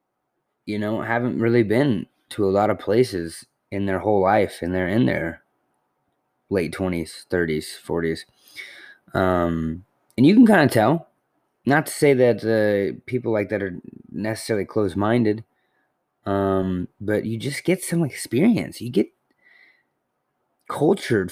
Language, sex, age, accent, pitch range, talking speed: English, male, 20-39, American, 90-115 Hz, 140 wpm